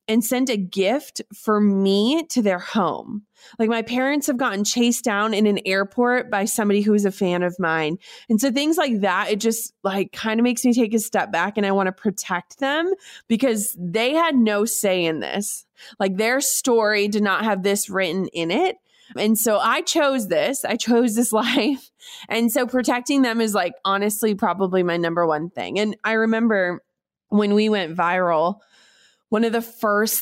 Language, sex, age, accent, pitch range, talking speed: English, female, 20-39, American, 180-225 Hz, 195 wpm